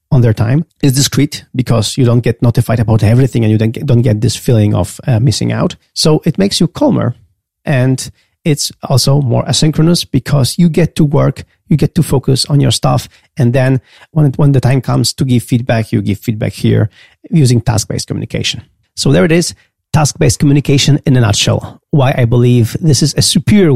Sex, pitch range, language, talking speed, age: male, 120-150 Hz, English, 200 wpm, 40-59